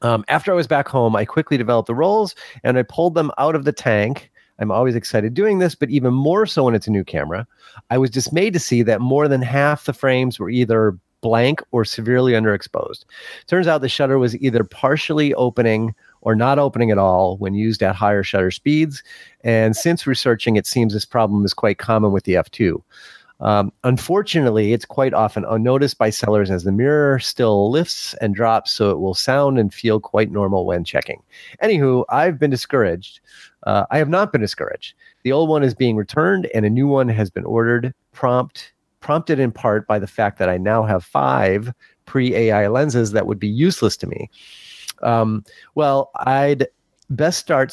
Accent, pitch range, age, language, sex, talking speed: American, 110-140 Hz, 30-49, English, male, 195 wpm